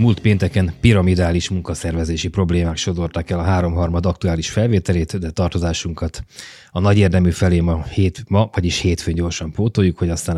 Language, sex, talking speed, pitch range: Hungarian, male, 150 wpm, 80-95 Hz